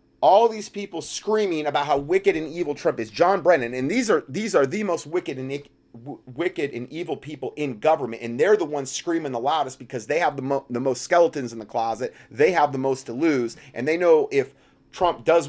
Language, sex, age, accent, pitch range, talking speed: English, male, 30-49, American, 110-155 Hz, 230 wpm